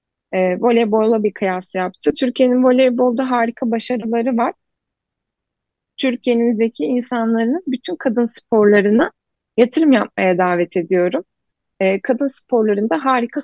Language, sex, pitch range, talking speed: Turkish, female, 190-250 Hz, 105 wpm